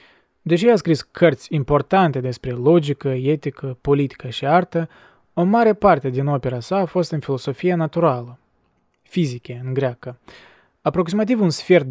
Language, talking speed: Romanian, 140 wpm